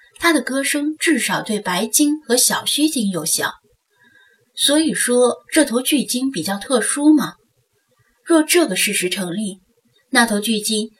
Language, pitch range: Chinese, 195-255 Hz